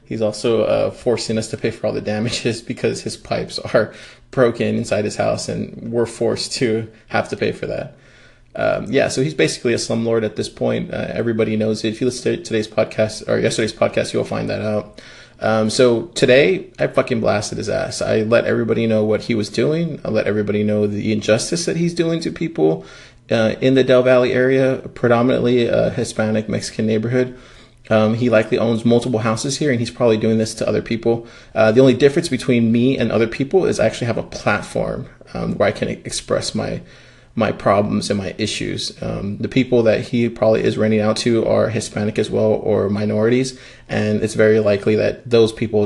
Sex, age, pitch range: male, 20-39, 110-125 Hz